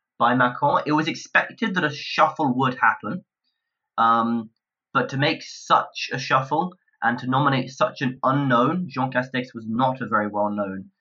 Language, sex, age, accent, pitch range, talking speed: English, male, 20-39, British, 115-140 Hz, 165 wpm